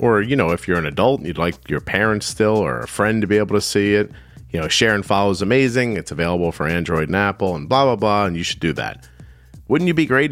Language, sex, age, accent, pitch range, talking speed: English, male, 40-59, American, 85-115 Hz, 280 wpm